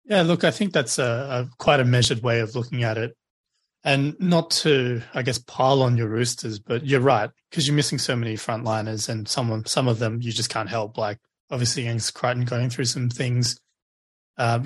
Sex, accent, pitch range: male, Australian, 115-135 Hz